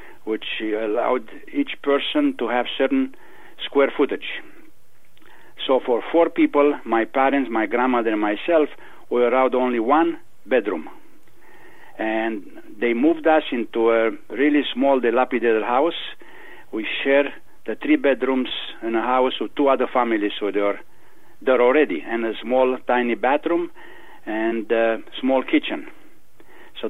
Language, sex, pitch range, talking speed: English, male, 115-150 Hz, 140 wpm